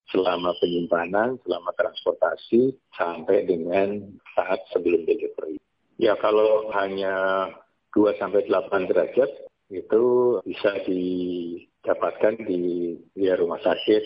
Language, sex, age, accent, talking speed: Indonesian, male, 30-49, native, 90 wpm